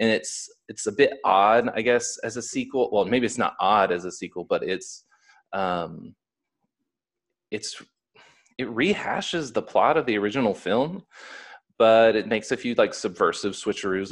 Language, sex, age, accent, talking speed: English, male, 30-49, American, 165 wpm